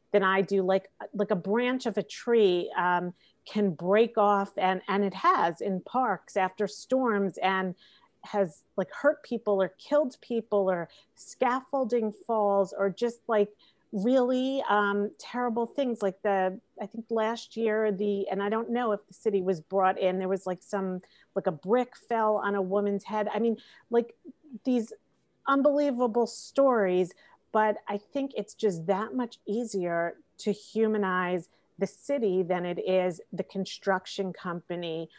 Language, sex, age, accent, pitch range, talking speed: English, female, 40-59, American, 185-225 Hz, 160 wpm